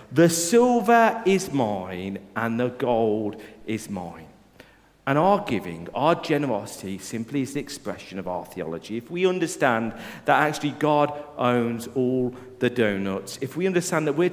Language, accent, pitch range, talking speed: English, British, 125-185 Hz, 150 wpm